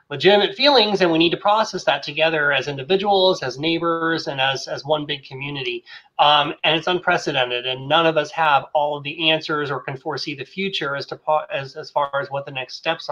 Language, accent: English, American